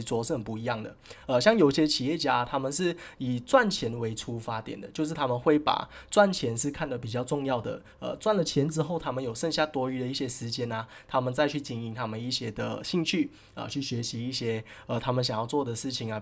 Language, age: Chinese, 20-39